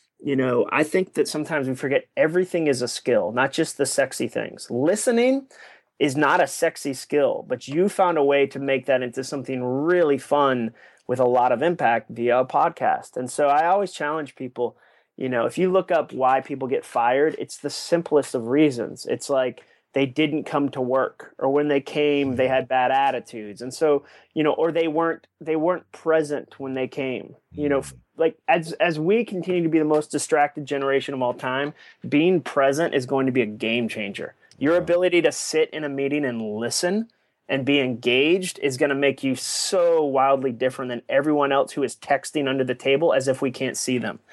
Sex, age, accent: male, 30-49, American